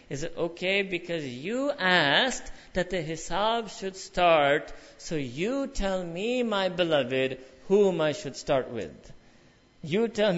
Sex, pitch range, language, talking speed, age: male, 165-195 Hz, English, 140 wpm, 50-69